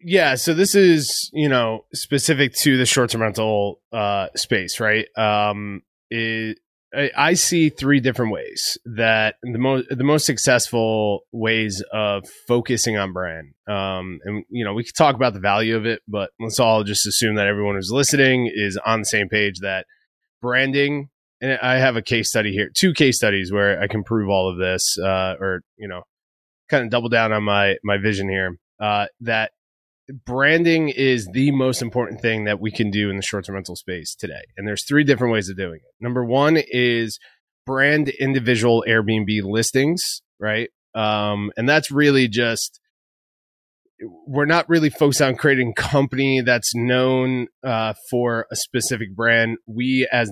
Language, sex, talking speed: English, male, 175 wpm